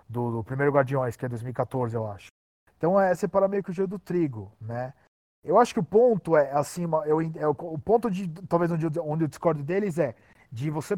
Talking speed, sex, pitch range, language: 235 wpm, male, 135-175 Hz, Portuguese